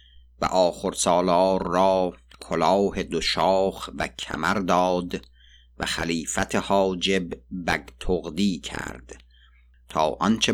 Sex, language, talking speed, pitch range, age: male, Persian, 95 wpm, 65-95 Hz, 50-69